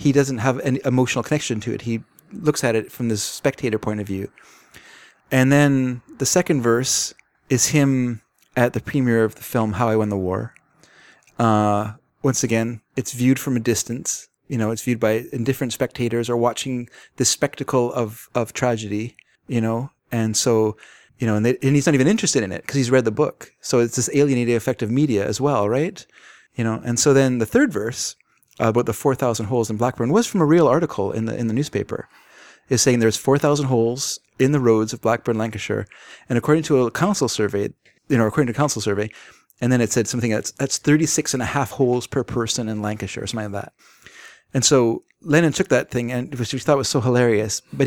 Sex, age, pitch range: male, 30-49, 115-135 Hz